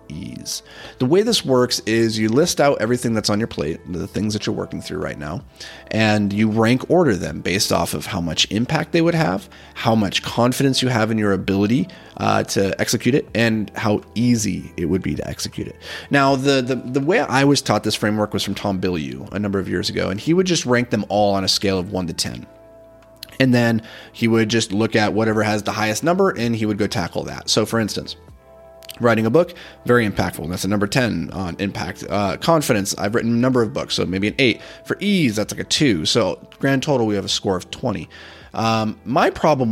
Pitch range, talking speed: 100-125 Hz, 230 wpm